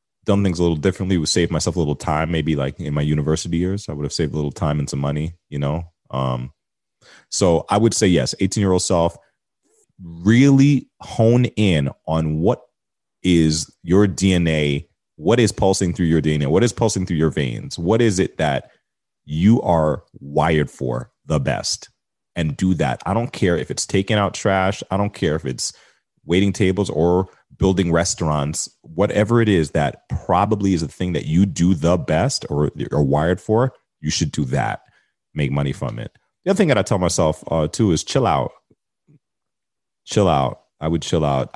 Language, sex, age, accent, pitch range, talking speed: English, male, 30-49, American, 80-95 Hz, 190 wpm